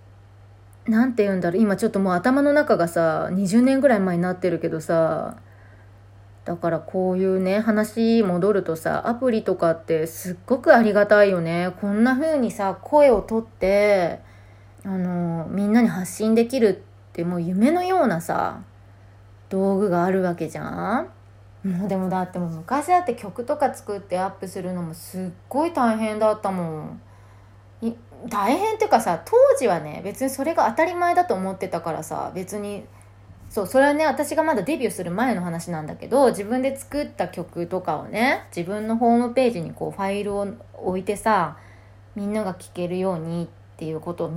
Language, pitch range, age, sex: Japanese, 165-230 Hz, 20-39, female